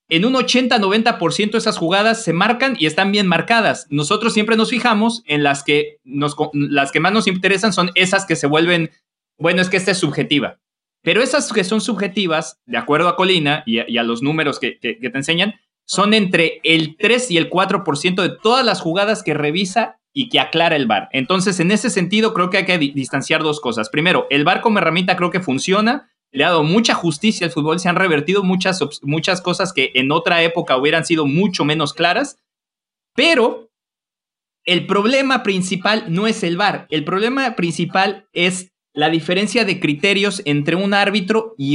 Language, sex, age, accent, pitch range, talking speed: English, male, 30-49, Mexican, 155-210 Hz, 195 wpm